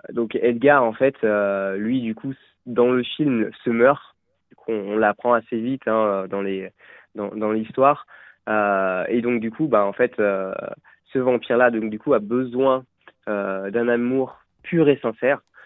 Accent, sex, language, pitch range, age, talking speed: French, male, French, 105-130 Hz, 20-39, 180 wpm